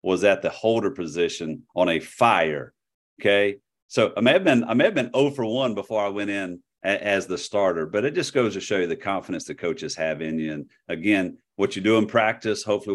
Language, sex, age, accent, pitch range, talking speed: English, male, 50-69, American, 90-110 Hz, 235 wpm